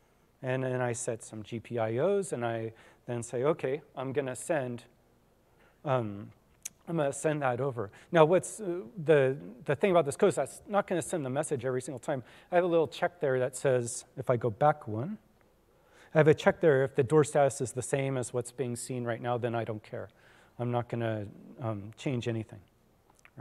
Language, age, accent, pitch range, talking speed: English, 40-59, American, 120-160 Hz, 210 wpm